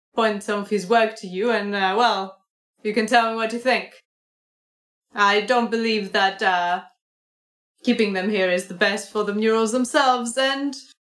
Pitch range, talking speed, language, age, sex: 185-220 Hz, 180 wpm, English, 20-39, female